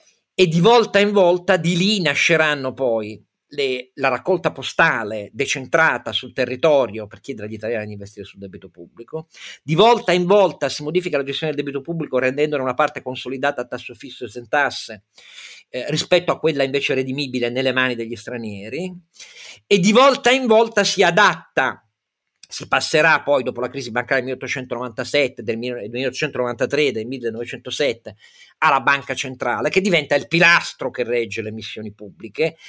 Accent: native